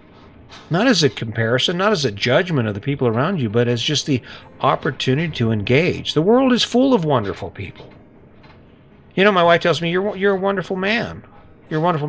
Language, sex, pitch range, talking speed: English, male, 120-160 Hz, 205 wpm